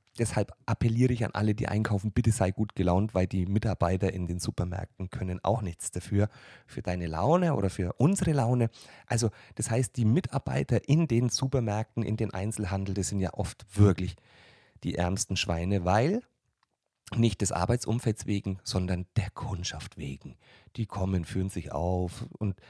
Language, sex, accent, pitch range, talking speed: German, male, German, 95-125 Hz, 165 wpm